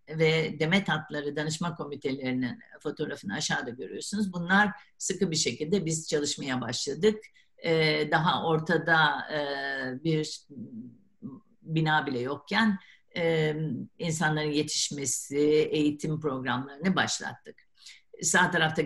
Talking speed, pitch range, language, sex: 100 wpm, 145-190 Hz, Turkish, female